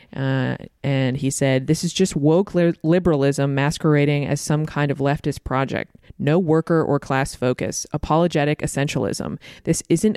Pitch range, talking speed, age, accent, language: 135-155 Hz, 150 wpm, 20-39, American, English